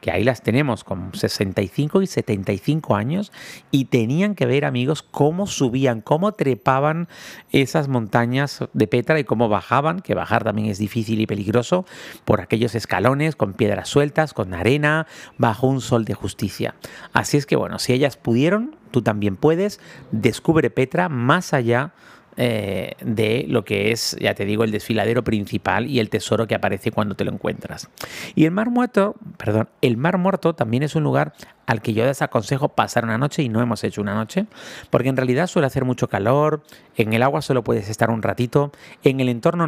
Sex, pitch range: male, 110-150 Hz